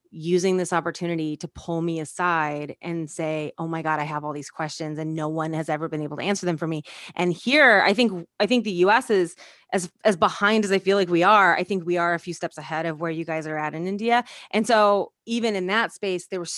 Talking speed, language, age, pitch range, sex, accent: 255 wpm, English, 20-39, 170-205 Hz, female, American